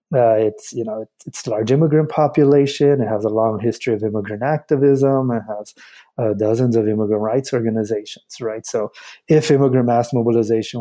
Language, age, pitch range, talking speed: English, 30-49, 115-145 Hz, 170 wpm